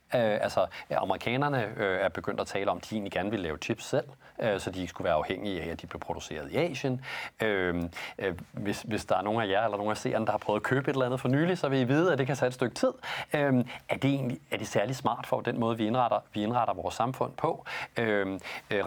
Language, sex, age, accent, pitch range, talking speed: Danish, male, 40-59, native, 105-135 Hz, 270 wpm